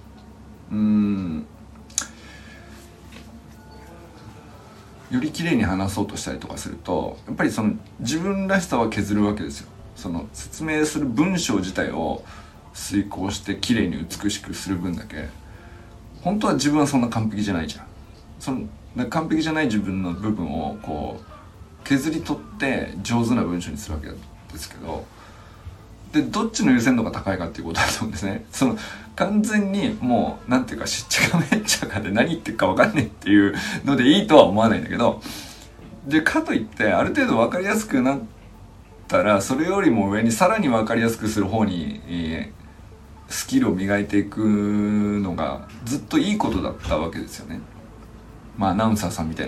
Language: Japanese